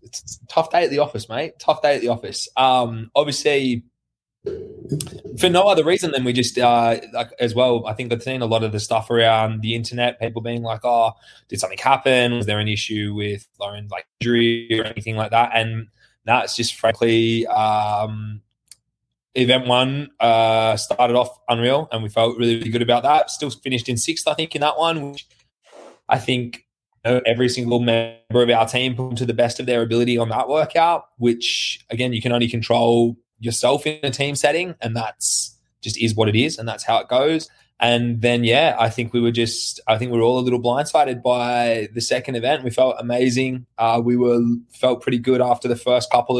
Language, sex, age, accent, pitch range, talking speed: English, male, 20-39, Australian, 115-125 Hz, 205 wpm